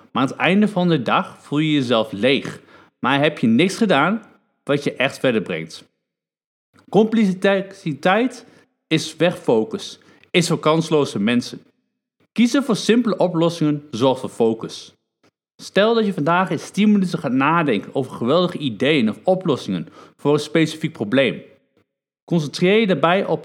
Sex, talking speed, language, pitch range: male, 145 wpm, Dutch, 155-220 Hz